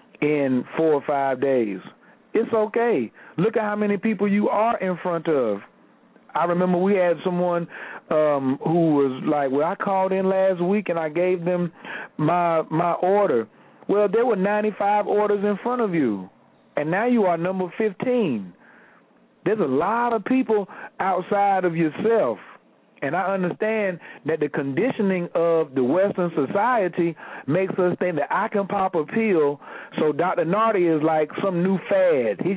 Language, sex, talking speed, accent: English, male, 165 wpm, American